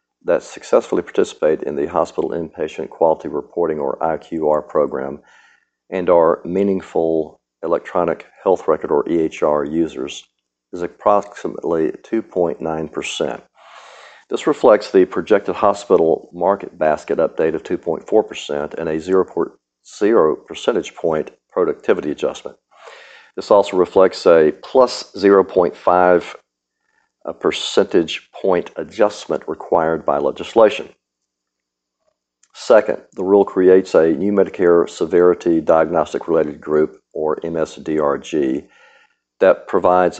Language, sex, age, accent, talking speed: English, male, 50-69, American, 105 wpm